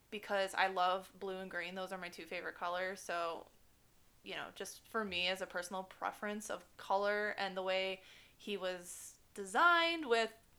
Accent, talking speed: American, 175 wpm